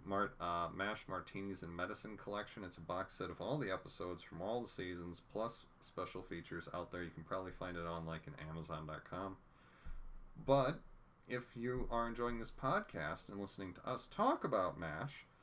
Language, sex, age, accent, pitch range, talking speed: English, male, 40-59, American, 90-125 Hz, 185 wpm